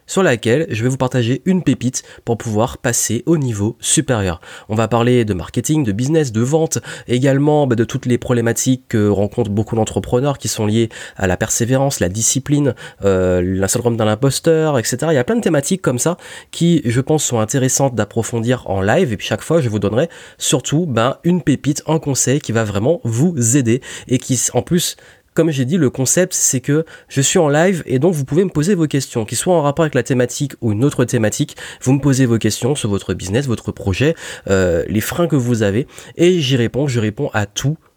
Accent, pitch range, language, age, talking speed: French, 115-145 Hz, French, 30-49, 215 wpm